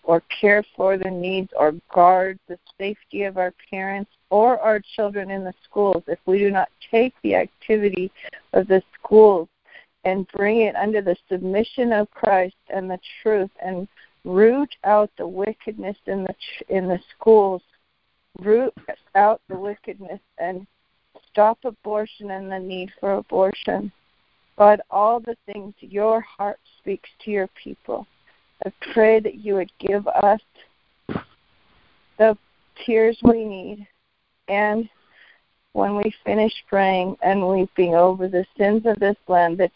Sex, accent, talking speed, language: female, American, 145 wpm, English